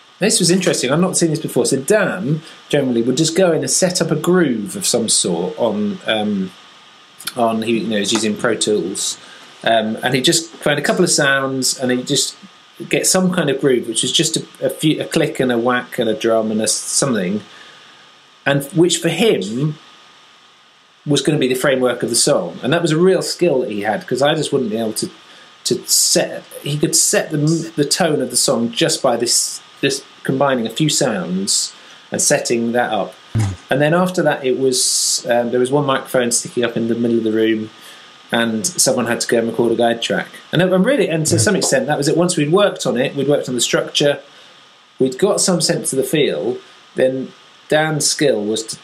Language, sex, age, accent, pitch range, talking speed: English, male, 30-49, British, 120-165 Hz, 220 wpm